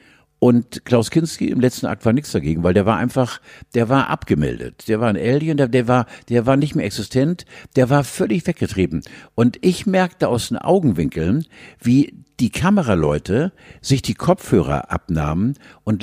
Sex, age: male, 60-79